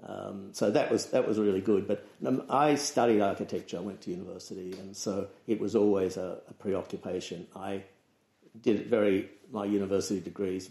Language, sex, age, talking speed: English, male, 60-79, 175 wpm